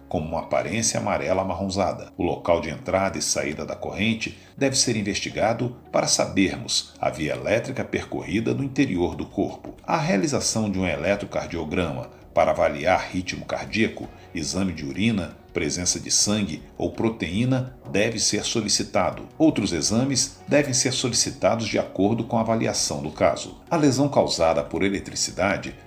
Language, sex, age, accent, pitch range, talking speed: Portuguese, male, 60-79, Brazilian, 95-130 Hz, 145 wpm